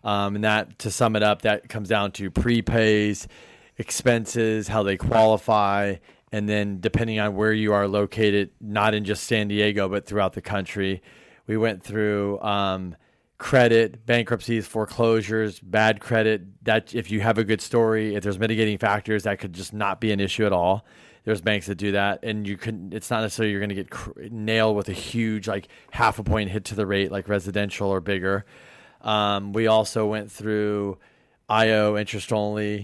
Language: English